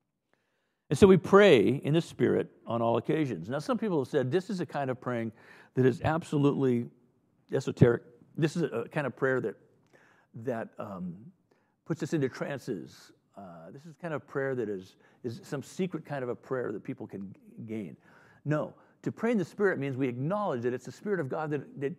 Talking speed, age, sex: 205 wpm, 50-69, male